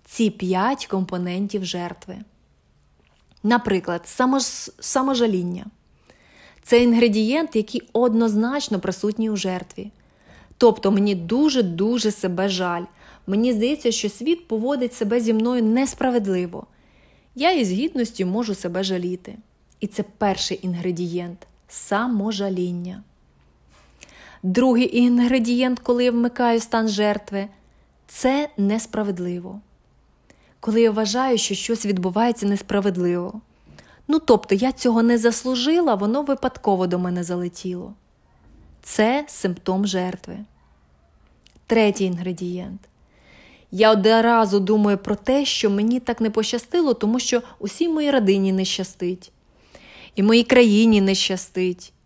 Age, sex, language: 20-39, female, Ukrainian